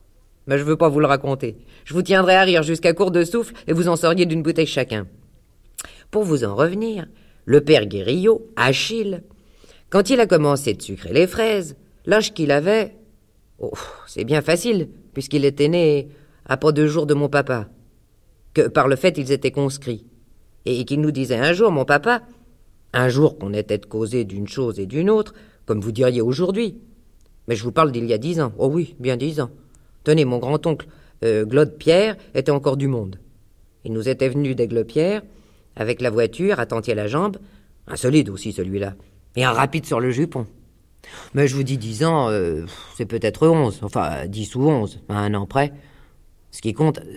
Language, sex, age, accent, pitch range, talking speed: French, female, 40-59, French, 110-165 Hz, 200 wpm